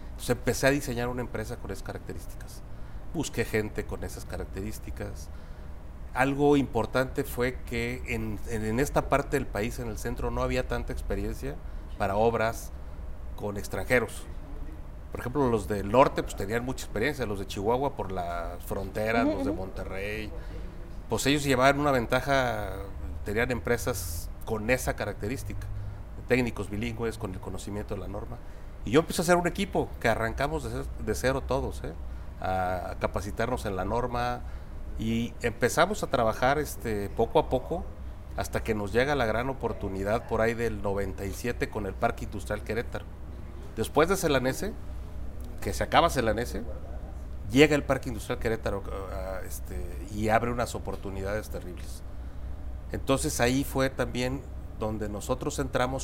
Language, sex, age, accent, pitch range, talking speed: Spanish, male, 40-59, Mexican, 90-125 Hz, 150 wpm